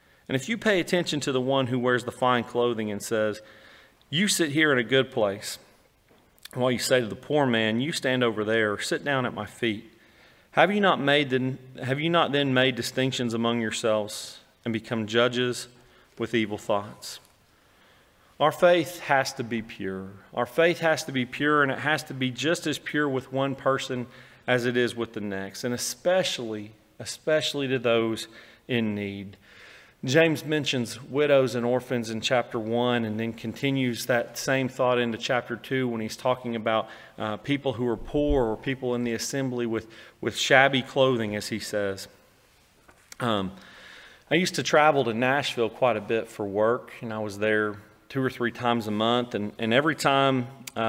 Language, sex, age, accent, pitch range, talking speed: English, male, 40-59, American, 115-135 Hz, 185 wpm